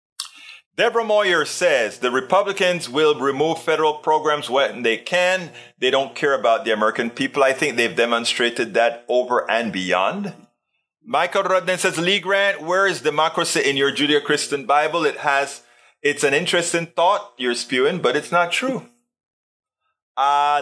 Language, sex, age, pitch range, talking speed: English, male, 30-49, 135-180 Hz, 150 wpm